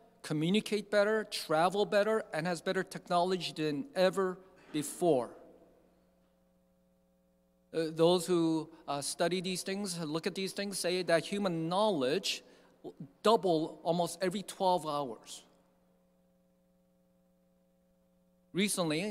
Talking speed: 100 wpm